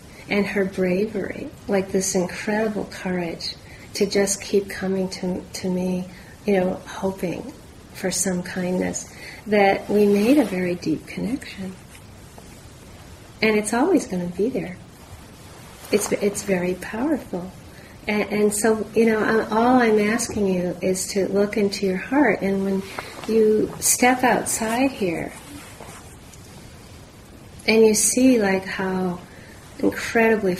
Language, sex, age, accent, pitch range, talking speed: English, female, 40-59, American, 185-210 Hz, 125 wpm